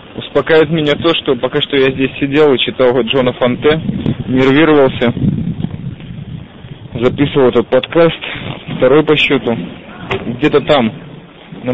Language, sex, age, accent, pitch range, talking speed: Russian, male, 20-39, native, 120-145 Hz, 120 wpm